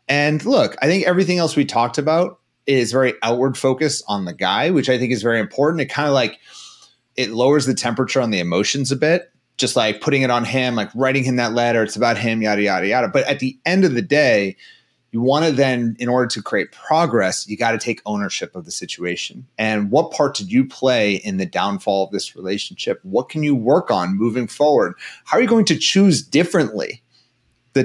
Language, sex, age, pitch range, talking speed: English, male, 30-49, 115-150 Hz, 220 wpm